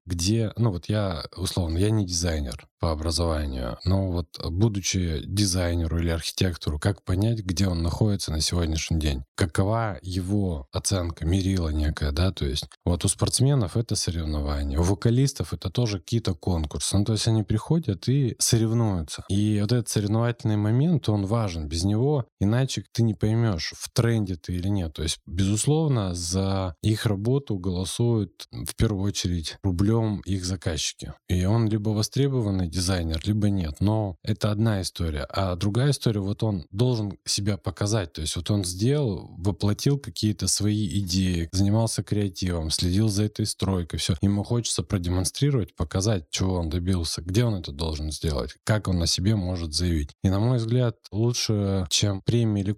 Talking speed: 160 wpm